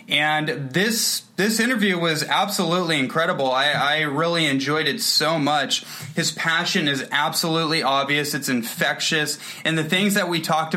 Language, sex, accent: English, male, American